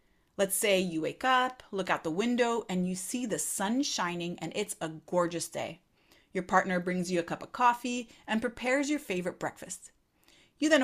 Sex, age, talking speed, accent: female, 30-49, 195 wpm, American